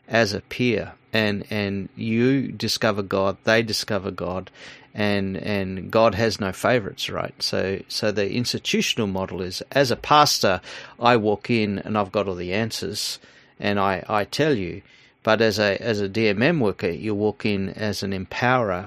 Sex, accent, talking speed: male, Australian, 170 wpm